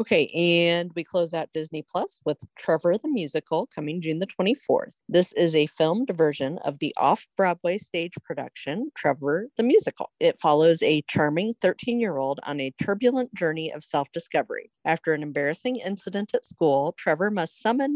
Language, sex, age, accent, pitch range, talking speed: English, female, 40-59, American, 150-215 Hz, 160 wpm